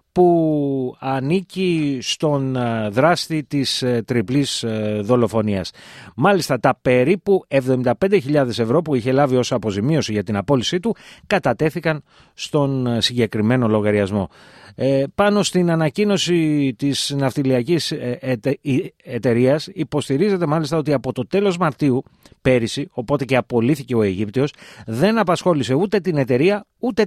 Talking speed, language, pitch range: 115 wpm, Greek, 125-175 Hz